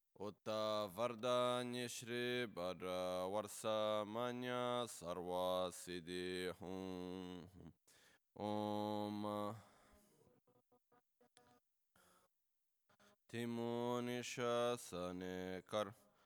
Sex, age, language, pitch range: male, 20-39, Italian, 90-120 Hz